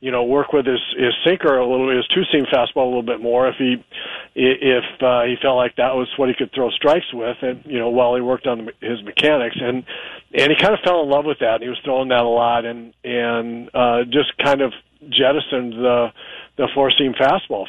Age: 40-59